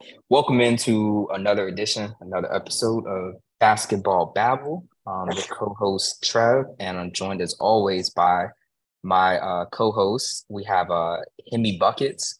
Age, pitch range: 20-39, 90-105 Hz